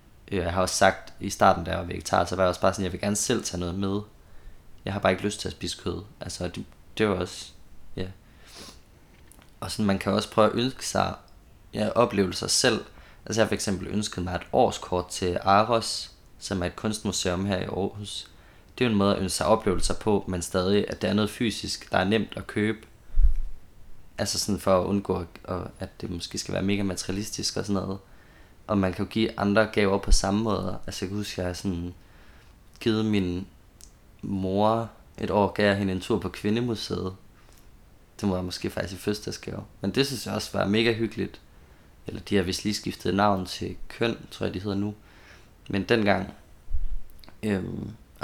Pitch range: 90-105 Hz